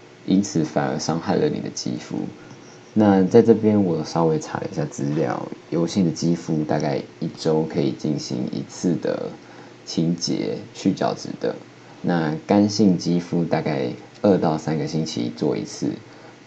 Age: 20-39